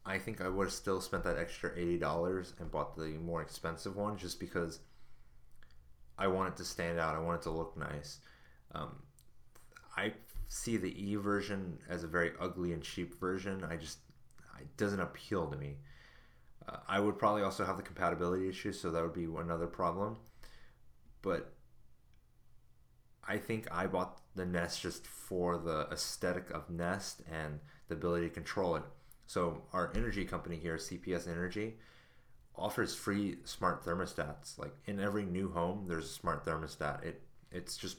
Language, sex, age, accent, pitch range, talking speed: English, male, 30-49, American, 80-95 Hz, 170 wpm